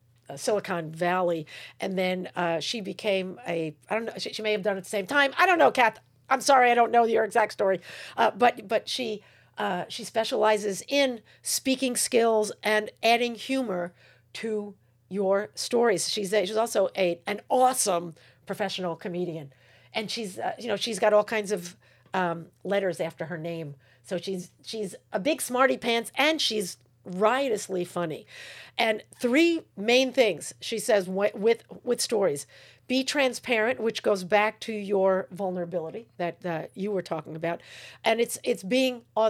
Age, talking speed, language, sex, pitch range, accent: 50-69, 170 wpm, English, female, 180-235 Hz, American